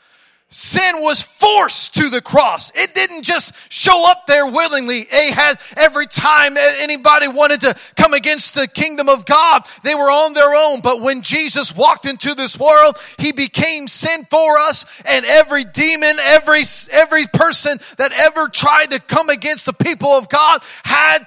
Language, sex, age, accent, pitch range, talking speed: English, male, 30-49, American, 270-315 Hz, 165 wpm